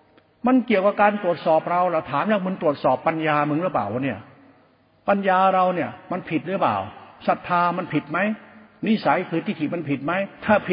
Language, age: Thai, 60-79